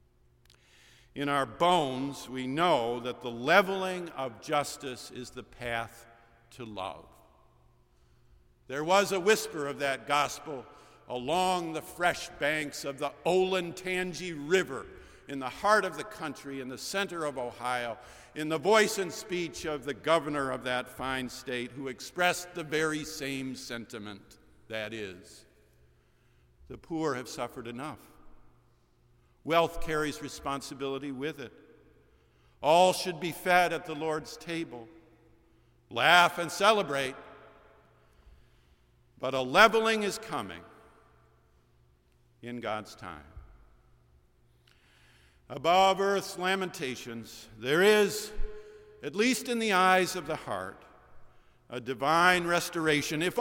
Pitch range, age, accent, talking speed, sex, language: 110-175 Hz, 50-69, American, 120 wpm, male, English